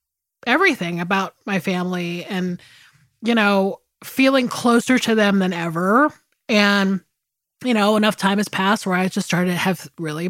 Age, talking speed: 20-39, 155 wpm